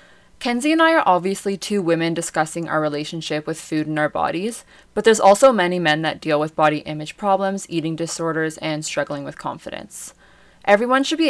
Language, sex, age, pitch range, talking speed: English, female, 20-39, 155-195 Hz, 185 wpm